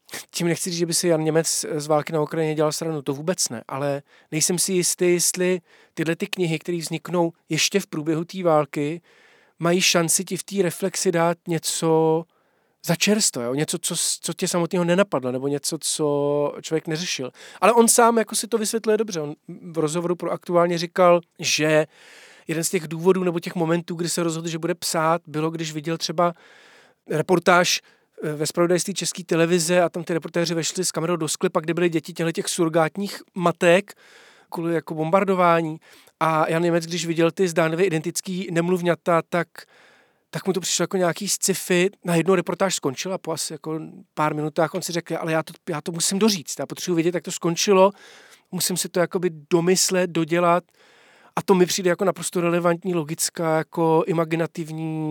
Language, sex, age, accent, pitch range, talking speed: Czech, male, 40-59, native, 160-185 Hz, 180 wpm